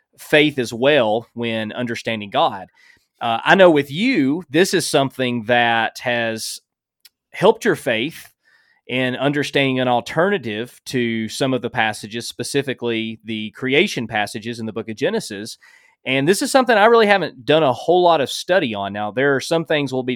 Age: 30-49